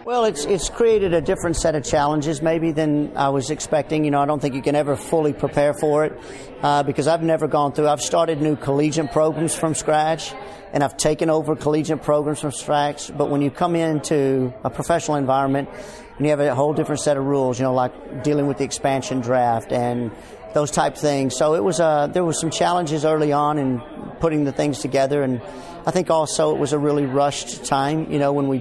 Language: English